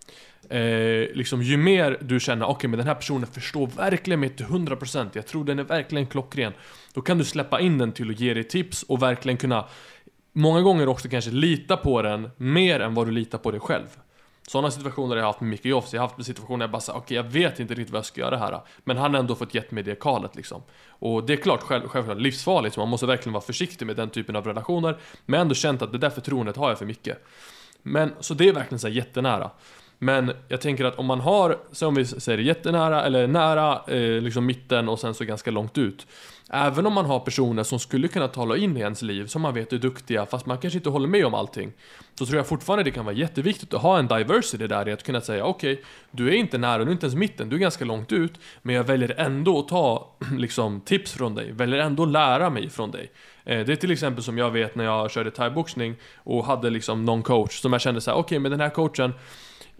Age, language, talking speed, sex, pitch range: 20-39, Swedish, 255 wpm, male, 120-150 Hz